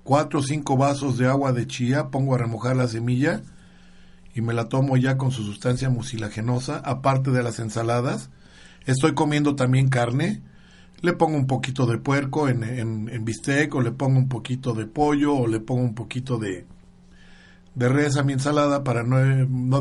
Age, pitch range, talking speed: 50-69, 115-135 Hz, 185 wpm